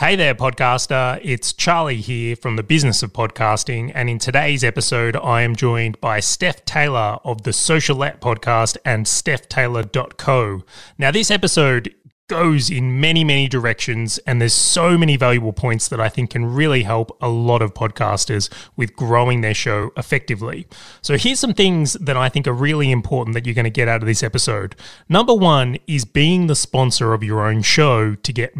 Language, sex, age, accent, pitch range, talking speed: English, male, 20-39, Australian, 115-145 Hz, 185 wpm